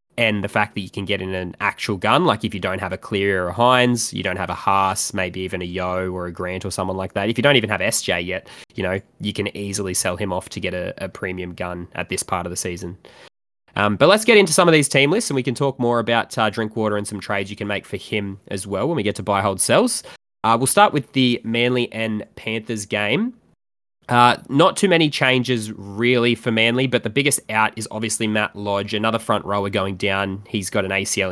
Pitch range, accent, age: 95-115 Hz, Australian, 20-39